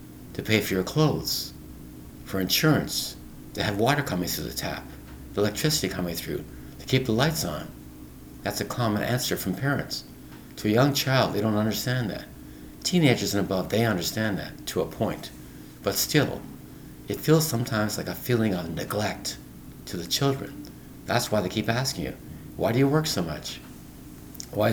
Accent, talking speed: American, 170 wpm